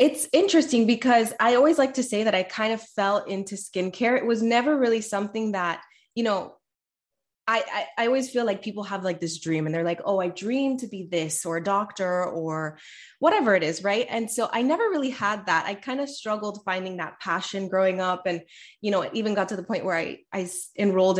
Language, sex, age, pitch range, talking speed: English, female, 20-39, 185-235 Hz, 225 wpm